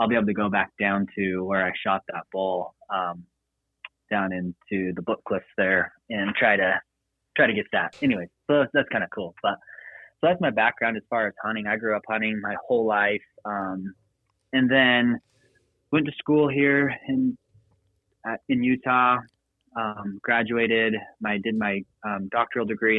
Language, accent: English, American